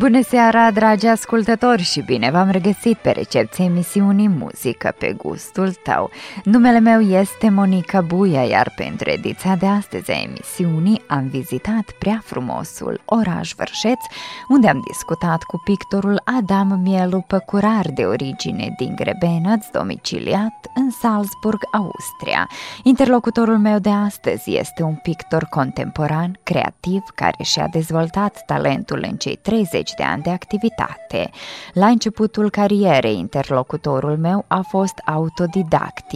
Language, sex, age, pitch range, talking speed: Romanian, female, 20-39, 175-220 Hz, 130 wpm